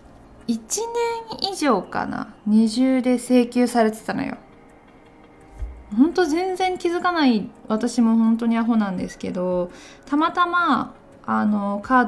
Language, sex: Japanese, female